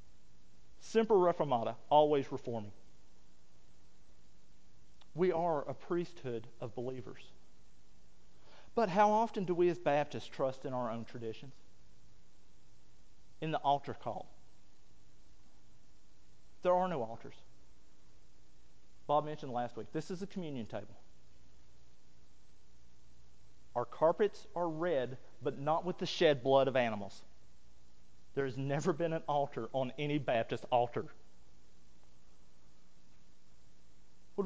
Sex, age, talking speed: male, 40-59, 110 wpm